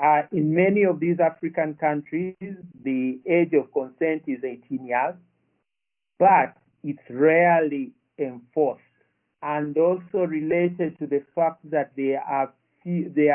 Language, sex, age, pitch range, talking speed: English, male, 50-69, 135-165 Hz, 125 wpm